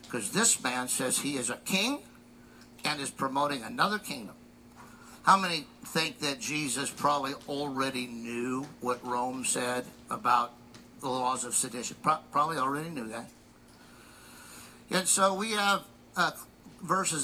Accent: American